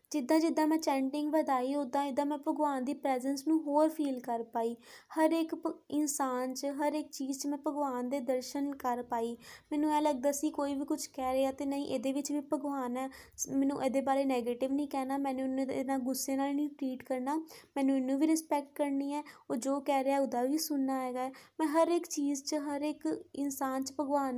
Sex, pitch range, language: female, 265-300 Hz, Punjabi